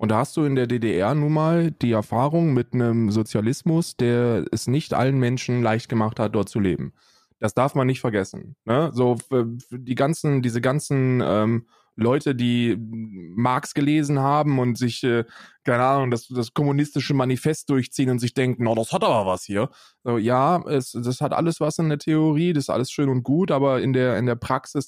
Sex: male